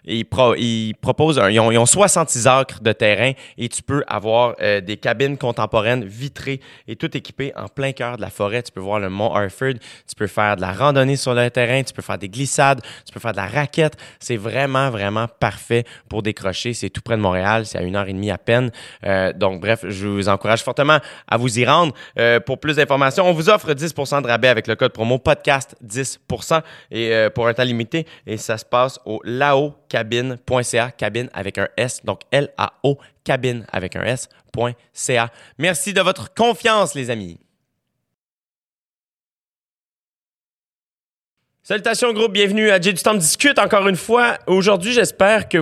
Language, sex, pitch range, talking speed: French, male, 110-150 Hz, 195 wpm